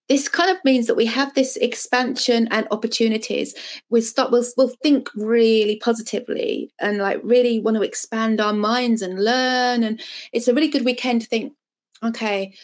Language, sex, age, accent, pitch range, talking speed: English, female, 20-39, British, 210-255 Hz, 170 wpm